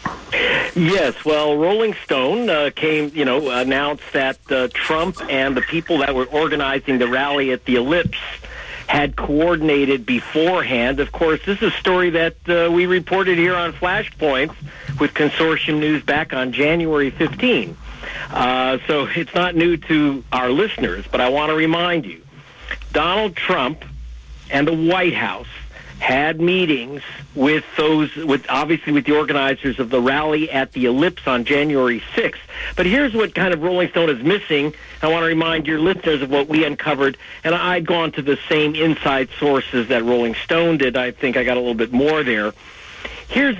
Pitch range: 135-175 Hz